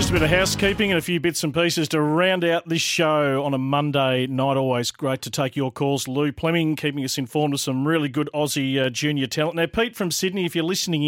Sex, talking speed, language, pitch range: male, 250 wpm, English, 125-160 Hz